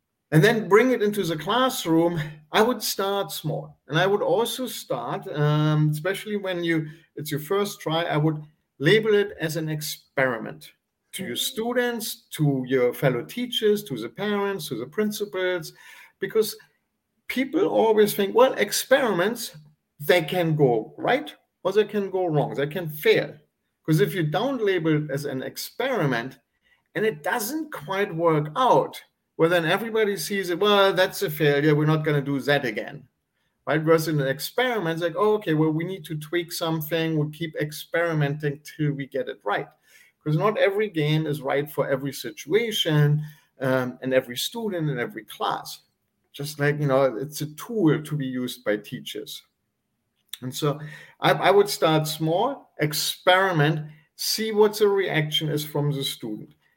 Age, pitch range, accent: 50-69, 145-200 Hz, German